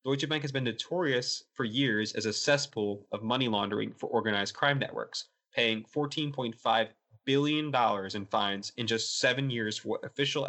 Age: 20-39